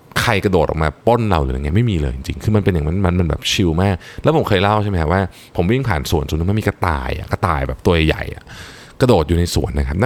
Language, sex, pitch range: Thai, male, 80-120 Hz